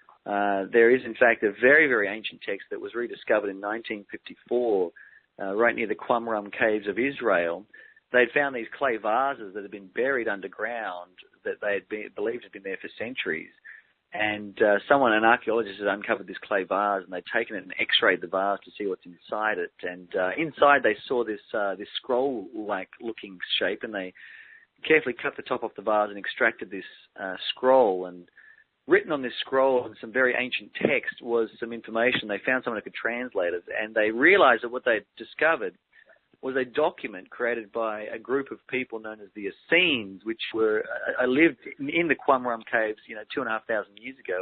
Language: English